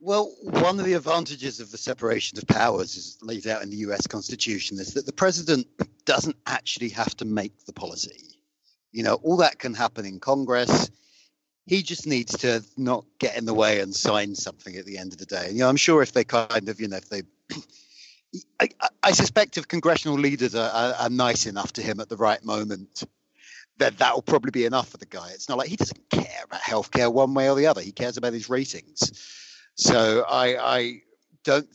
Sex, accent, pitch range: male, British, 105-130 Hz